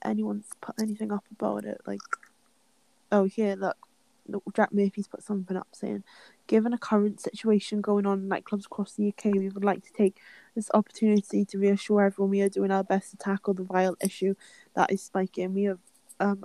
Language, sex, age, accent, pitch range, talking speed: English, female, 10-29, British, 195-220 Hz, 195 wpm